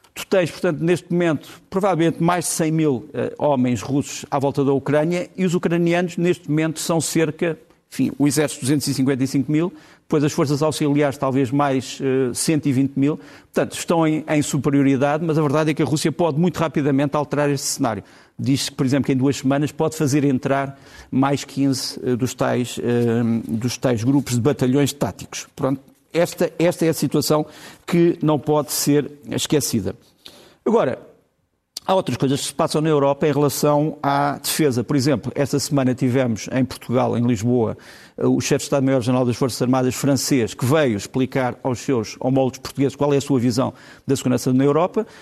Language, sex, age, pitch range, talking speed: Portuguese, male, 50-69, 130-155 Hz, 180 wpm